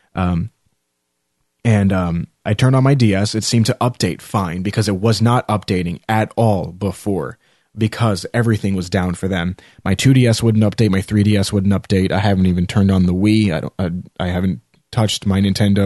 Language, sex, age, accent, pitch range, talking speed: English, male, 20-39, American, 95-110 Hz, 190 wpm